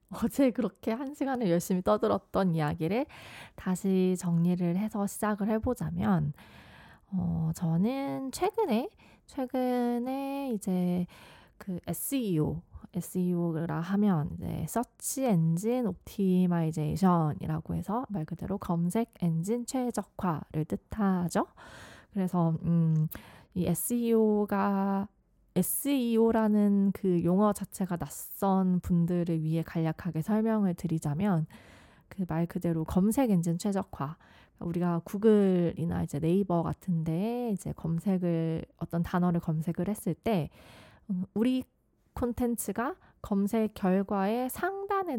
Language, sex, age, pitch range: Korean, female, 20-39, 170-220 Hz